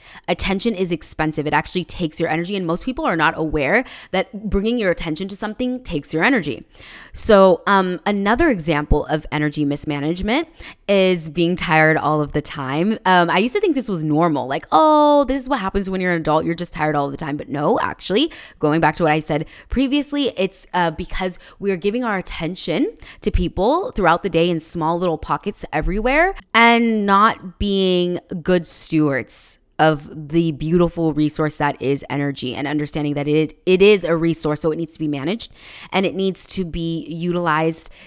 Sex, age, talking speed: female, 10-29, 190 wpm